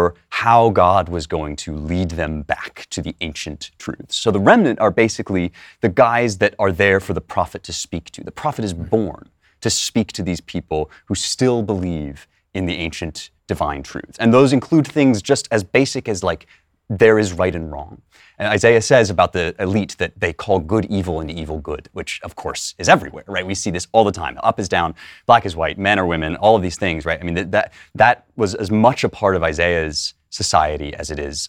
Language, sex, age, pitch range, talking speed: English, male, 30-49, 85-120 Hz, 220 wpm